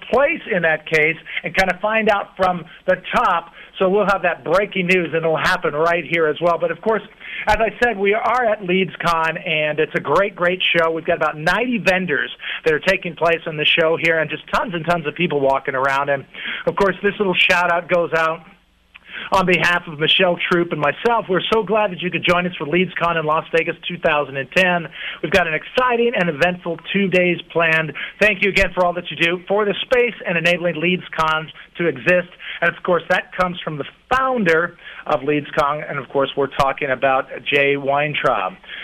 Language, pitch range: English, 160-190 Hz